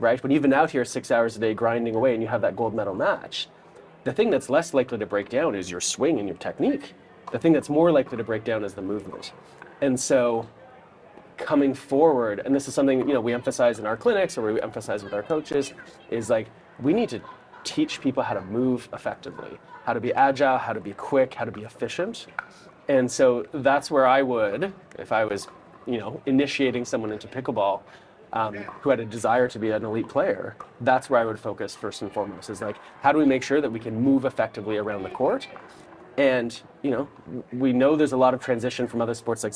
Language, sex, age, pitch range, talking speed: English, male, 30-49, 115-145 Hz, 225 wpm